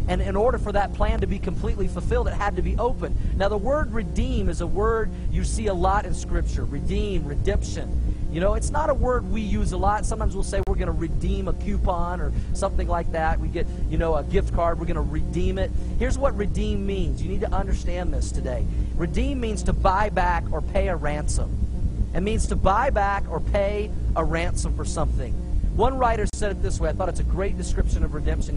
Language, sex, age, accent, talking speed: English, male, 40-59, American, 230 wpm